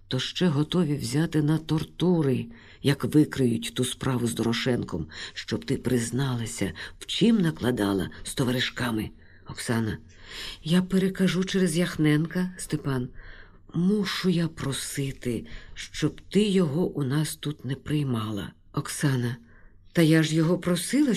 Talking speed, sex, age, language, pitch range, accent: 120 wpm, female, 50-69, Ukrainian, 110-175 Hz, native